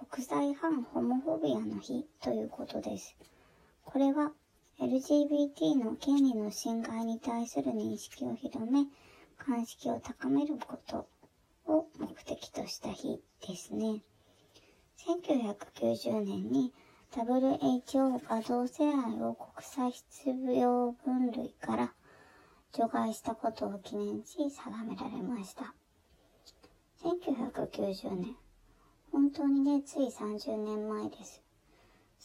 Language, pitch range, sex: Japanese, 215-275 Hz, male